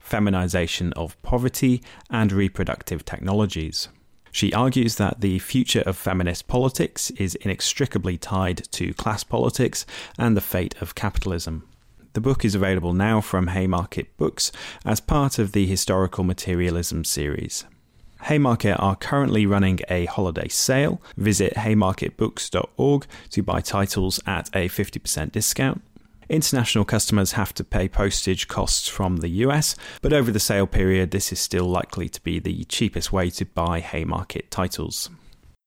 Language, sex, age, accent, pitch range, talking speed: English, male, 30-49, British, 90-110 Hz, 140 wpm